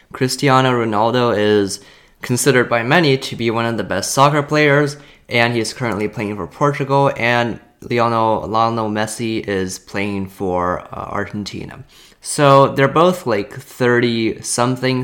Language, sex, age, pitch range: Chinese, male, 20-39, 105-135 Hz